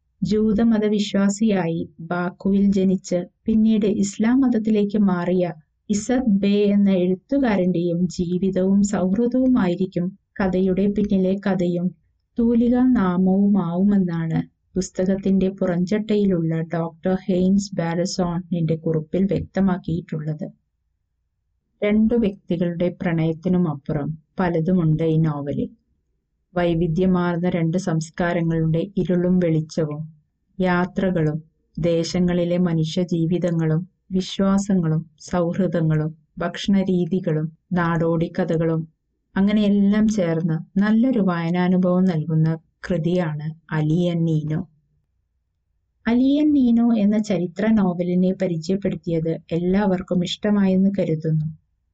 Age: 20-39